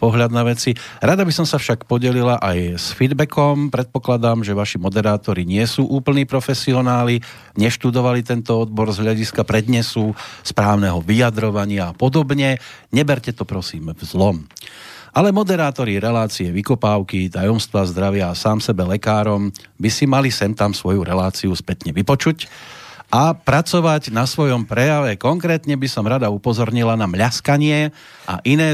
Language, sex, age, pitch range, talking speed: Slovak, male, 40-59, 100-140 Hz, 140 wpm